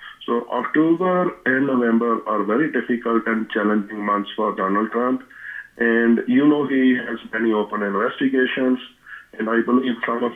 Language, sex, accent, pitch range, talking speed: English, male, Indian, 105-125 Hz, 150 wpm